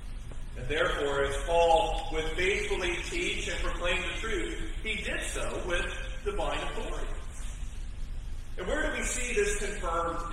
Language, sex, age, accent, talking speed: English, male, 40-59, American, 135 wpm